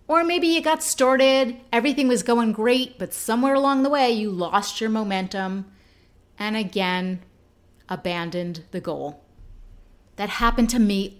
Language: English